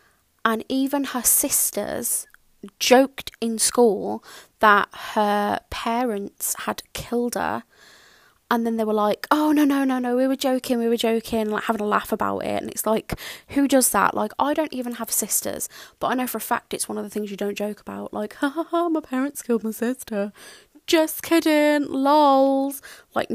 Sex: female